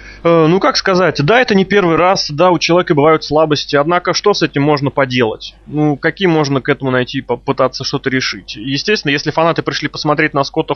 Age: 20-39